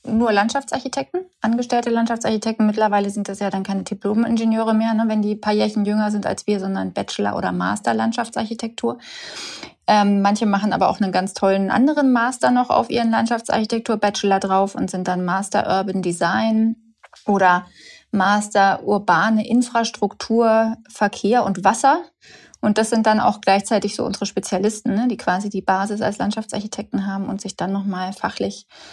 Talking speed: 150 wpm